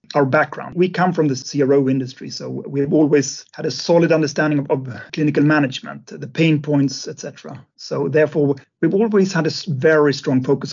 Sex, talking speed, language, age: male, 180 wpm, English, 40-59